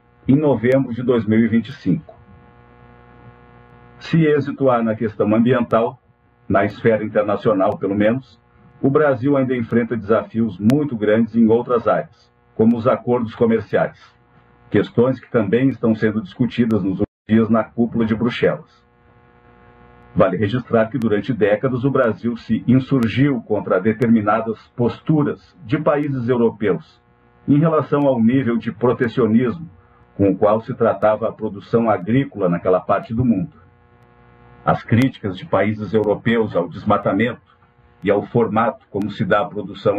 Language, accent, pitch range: Portuguese, Brazilian, 105-125 Hz